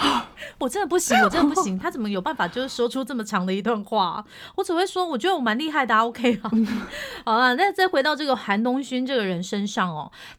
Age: 30-49